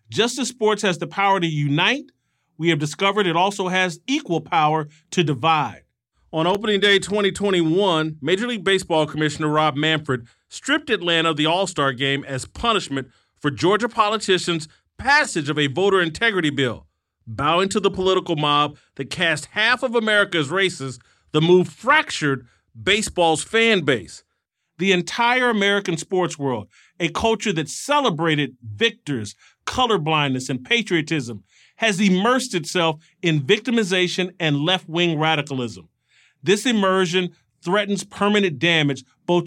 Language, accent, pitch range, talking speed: English, American, 150-205 Hz, 135 wpm